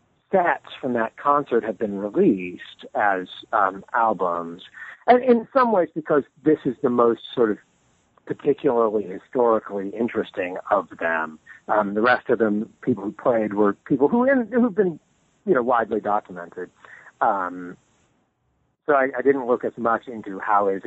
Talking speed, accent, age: 155 wpm, American, 50-69